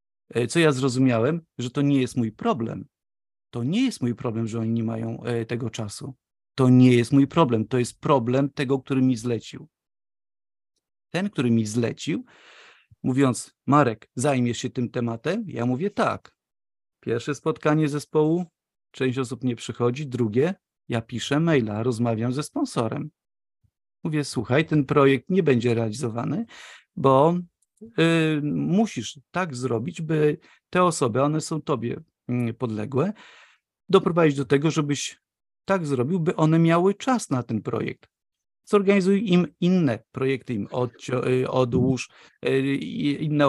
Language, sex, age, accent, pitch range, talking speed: Polish, male, 40-59, native, 120-160 Hz, 135 wpm